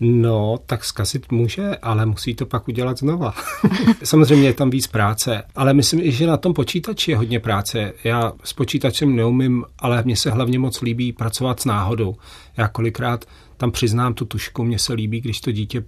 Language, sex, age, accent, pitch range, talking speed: Czech, male, 40-59, native, 110-125 Hz, 185 wpm